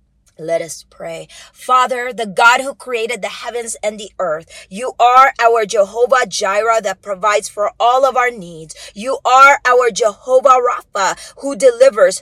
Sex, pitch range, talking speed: female, 235-280 Hz, 155 wpm